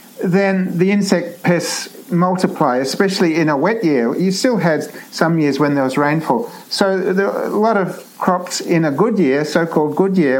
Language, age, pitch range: English, 50-69, 155-200 Hz